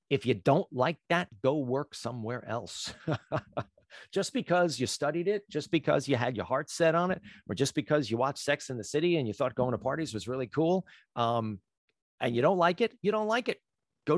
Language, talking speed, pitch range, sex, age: English, 220 wpm, 120-170 Hz, male, 40-59